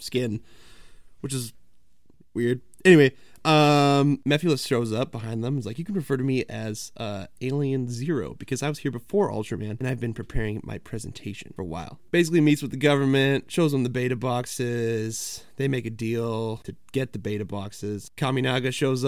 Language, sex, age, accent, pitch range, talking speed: English, male, 20-39, American, 105-135 Hz, 180 wpm